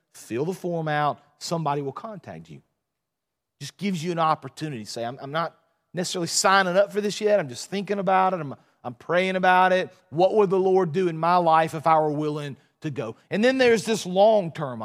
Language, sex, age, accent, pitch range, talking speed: English, male, 40-59, American, 140-185 Hz, 215 wpm